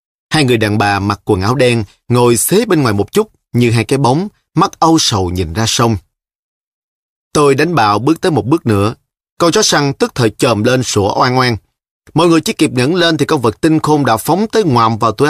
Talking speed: 230 wpm